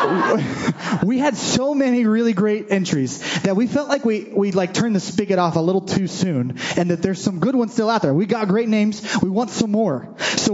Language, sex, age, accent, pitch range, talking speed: English, male, 20-39, American, 170-225 Hz, 230 wpm